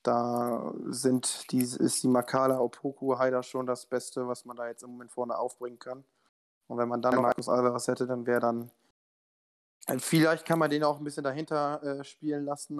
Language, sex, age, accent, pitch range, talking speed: German, male, 20-39, German, 120-140 Hz, 195 wpm